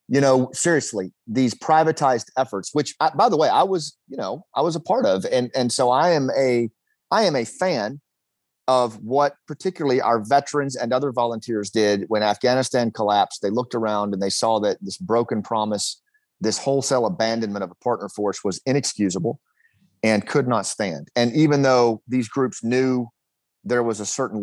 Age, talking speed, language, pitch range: 40-59, 185 wpm, English, 110-135 Hz